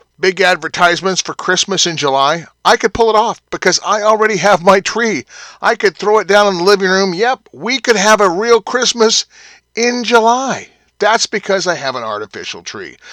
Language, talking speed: English, 190 wpm